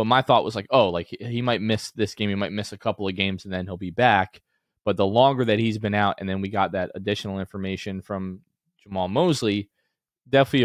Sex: male